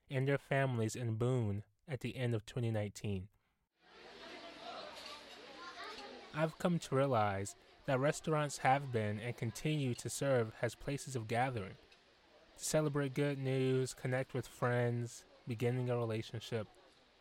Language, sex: English, male